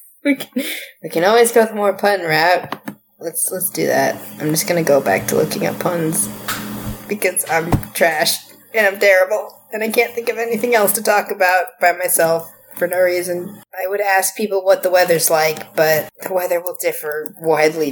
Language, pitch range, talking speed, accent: English, 150-205 Hz, 200 wpm, American